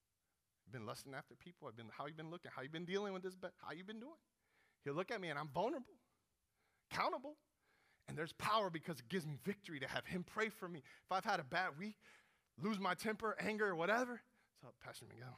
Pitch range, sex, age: 150-220 Hz, male, 30-49